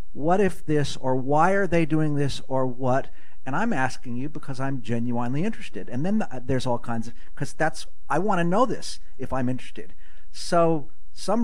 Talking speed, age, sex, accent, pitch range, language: 195 wpm, 50-69, male, American, 120-155 Hz, English